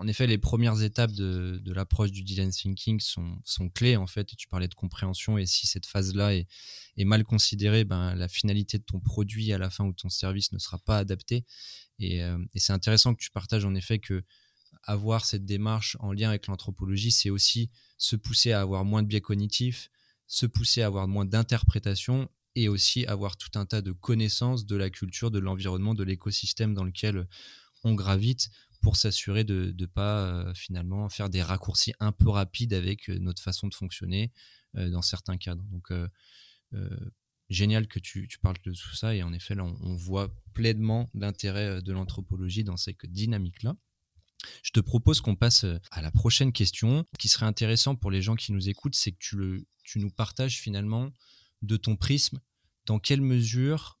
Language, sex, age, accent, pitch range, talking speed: French, male, 20-39, French, 95-110 Hz, 195 wpm